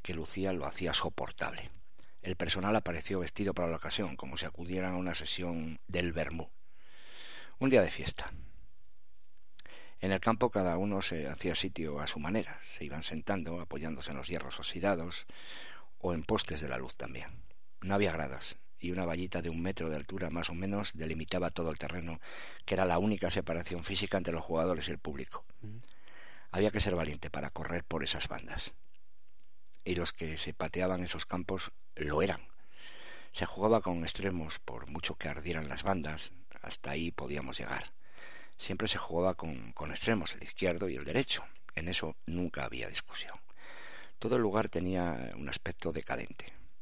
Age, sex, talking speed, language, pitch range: 50-69, male, 175 wpm, Spanish, 75-90 Hz